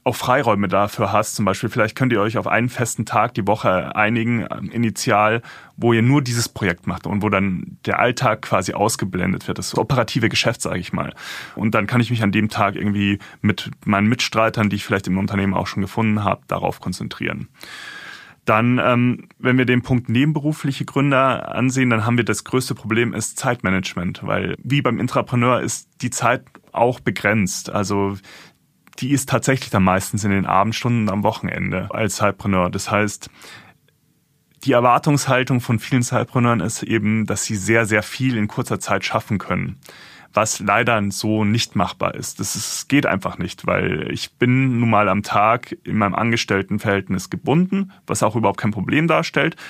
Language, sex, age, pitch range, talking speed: German, male, 30-49, 100-125 Hz, 175 wpm